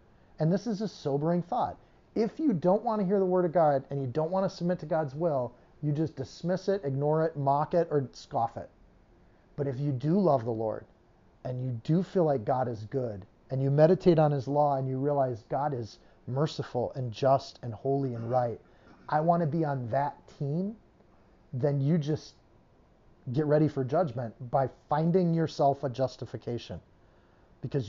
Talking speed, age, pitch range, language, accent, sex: 185 wpm, 30-49, 130-175 Hz, English, American, male